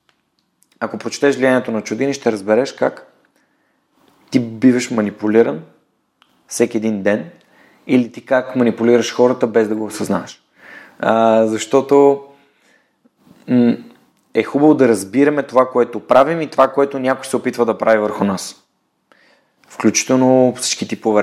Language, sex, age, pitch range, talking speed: Bulgarian, male, 30-49, 115-150 Hz, 125 wpm